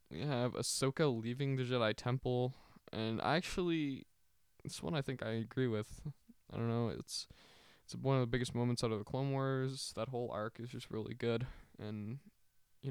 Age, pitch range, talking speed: 20-39, 110-150 Hz, 190 wpm